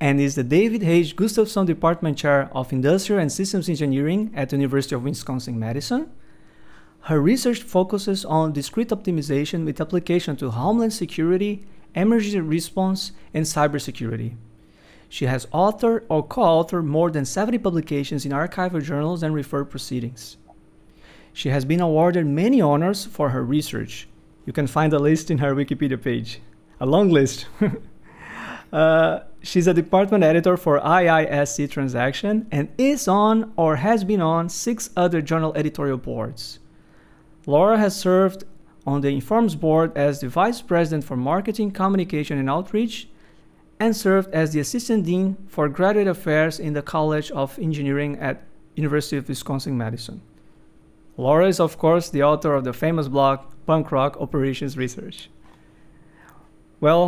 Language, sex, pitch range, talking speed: English, male, 140-185 Hz, 145 wpm